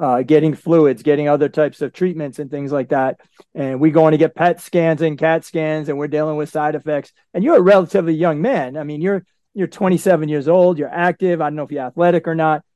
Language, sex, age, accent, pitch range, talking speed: English, male, 40-59, American, 150-180 Hz, 240 wpm